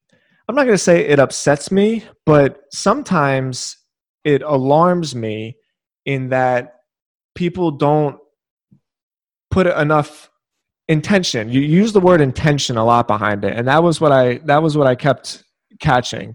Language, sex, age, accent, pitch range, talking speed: English, male, 20-39, American, 125-150 Hz, 145 wpm